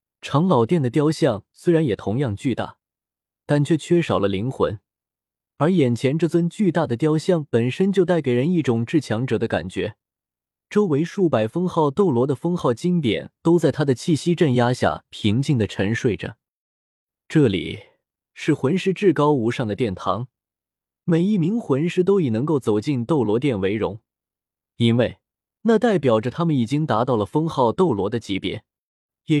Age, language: 20-39, Chinese